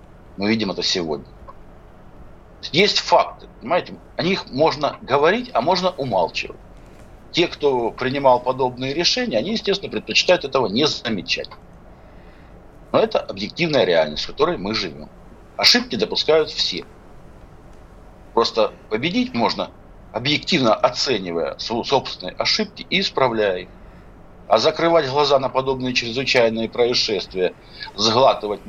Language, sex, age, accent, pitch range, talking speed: Russian, male, 60-79, native, 100-155 Hz, 115 wpm